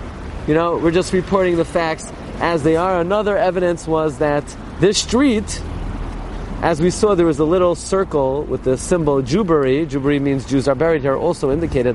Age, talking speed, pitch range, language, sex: 30-49, 180 wpm, 125-160 Hz, English, male